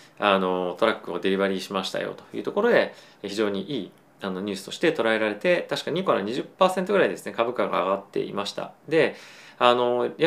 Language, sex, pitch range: Japanese, male, 100-135 Hz